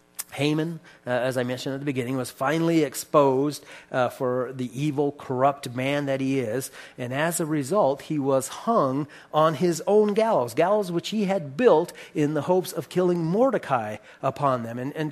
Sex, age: male, 40-59